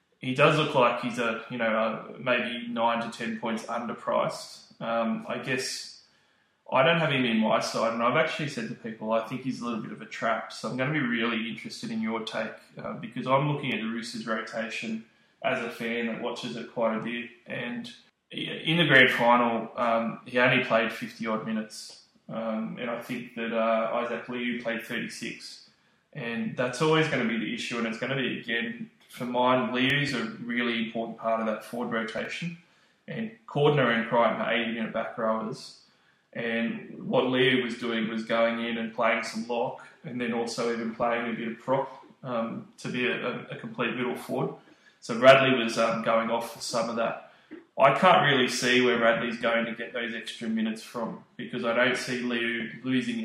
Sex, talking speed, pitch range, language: male, 205 wpm, 115-125 Hz, English